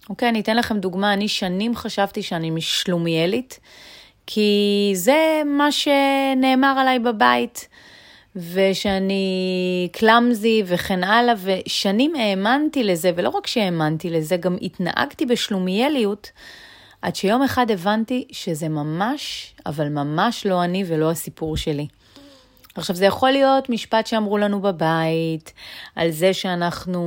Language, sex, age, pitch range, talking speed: Hebrew, female, 30-49, 170-235 Hz, 120 wpm